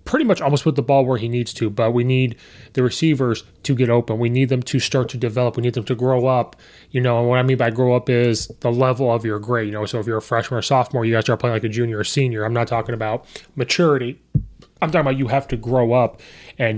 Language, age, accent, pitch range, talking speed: English, 20-39, American, 115-135 Hz, 275 wpm